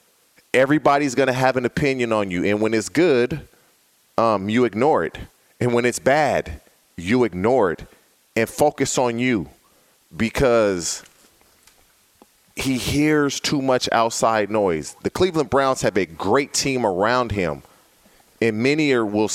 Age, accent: 30-49, American